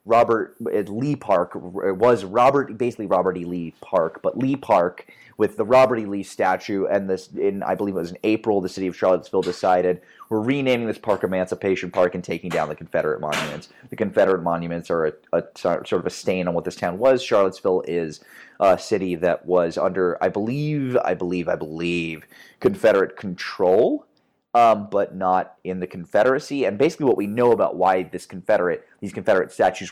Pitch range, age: 90-115 Hz, 30-49